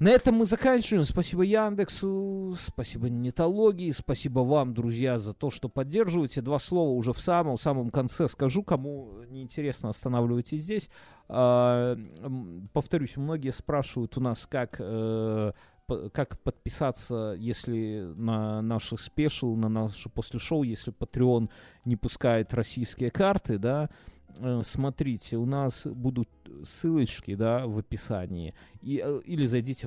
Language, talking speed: Russian, 125 wpm